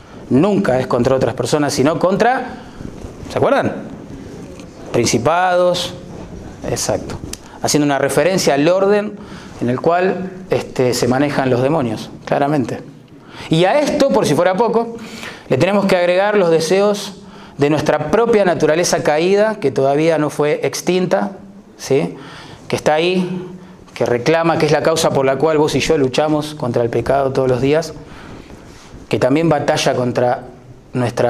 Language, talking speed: Spanish, 140 wpm